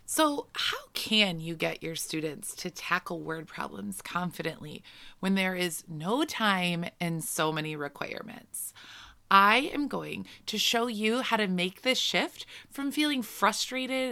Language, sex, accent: English, female, American